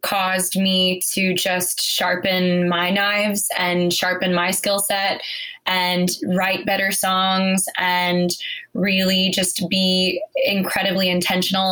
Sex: female